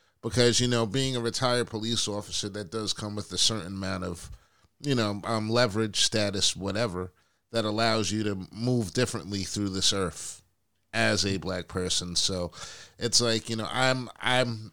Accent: American